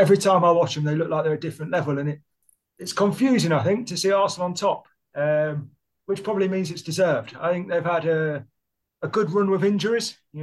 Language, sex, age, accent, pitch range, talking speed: English, male, 30-49, British, 150-190 Hz, 230 wpm